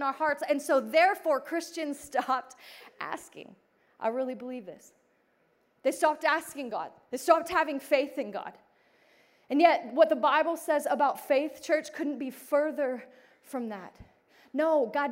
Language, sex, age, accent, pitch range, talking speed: English, female, 30-49, American, 260-310 Hz, 150 wpm